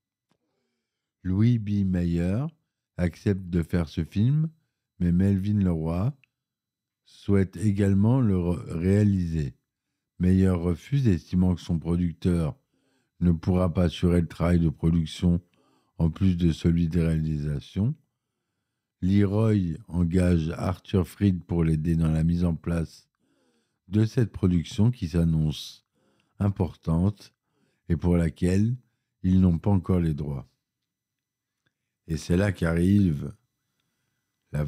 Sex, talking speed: male, 115 wpm